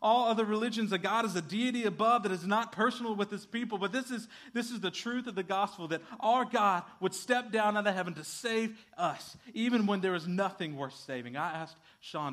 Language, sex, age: English, male, 40-59